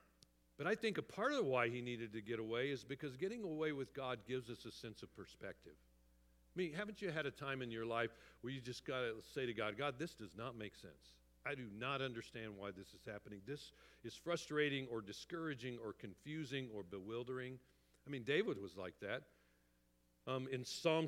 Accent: American